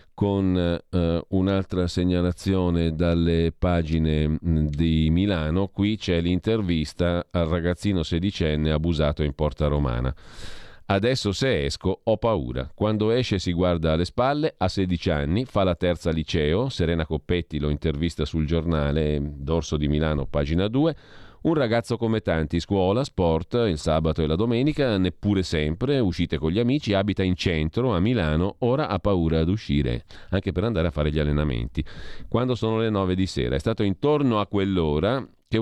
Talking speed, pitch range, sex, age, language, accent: 160 wpm, 80-110 Hz, male, 40-59, Italian, native